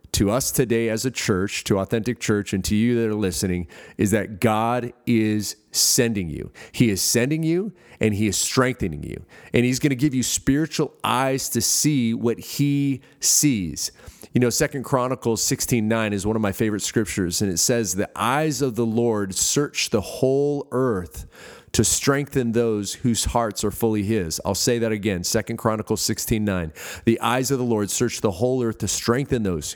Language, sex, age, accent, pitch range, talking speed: English, male, 30-49, American, 105-130 Hz, 190 wpm